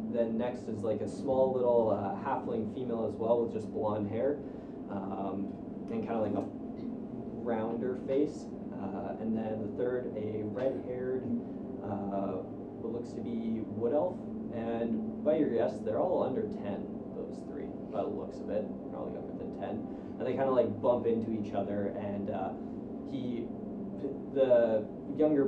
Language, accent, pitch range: English, American, 105-125 Hz